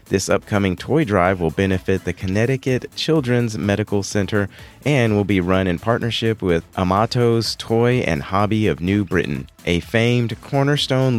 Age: 30-49